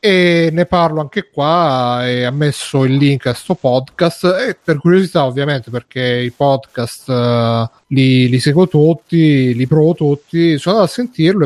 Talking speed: 170 wpm